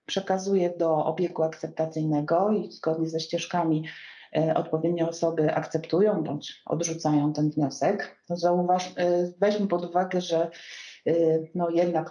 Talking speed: 125 wpm